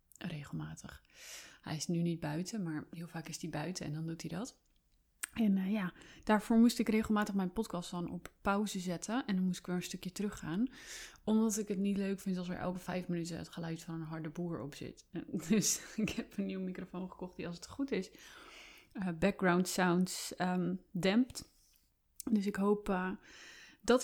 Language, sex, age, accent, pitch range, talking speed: Dutch, female, 20-39, Dutch, 180-215 Hz, 200 wpm